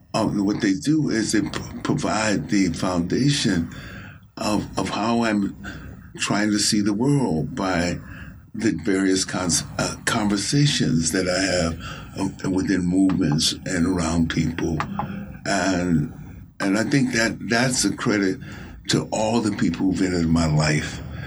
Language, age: English, 60-79